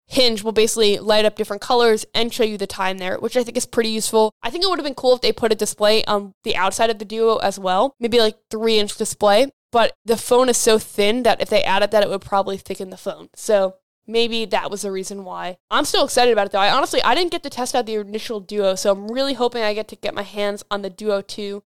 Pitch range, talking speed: 205-245 Hz, 275 wpm